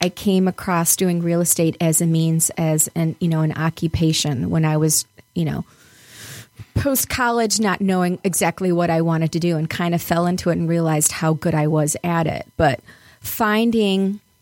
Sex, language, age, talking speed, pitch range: female, English, 30-49, 190 wpm, 160-190 Hz